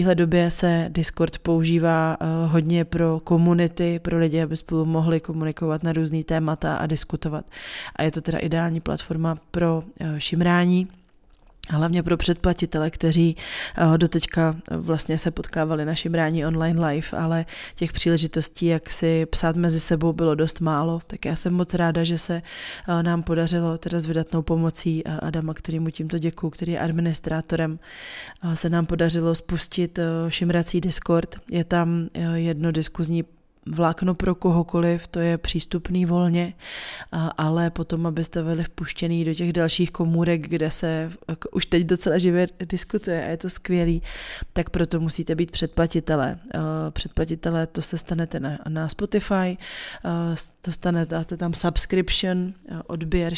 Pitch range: 160-175 Hz